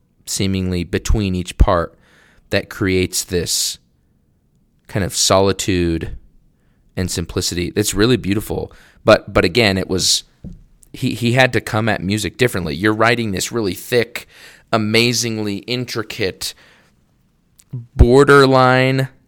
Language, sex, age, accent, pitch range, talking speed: English, male, 20-39, American, 95-125 Hz, 110 wpm